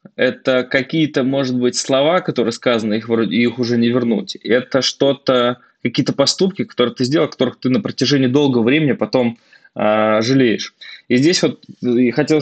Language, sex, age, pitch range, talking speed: Russian, male, 20-39, 115-140 Hz, 150 wpm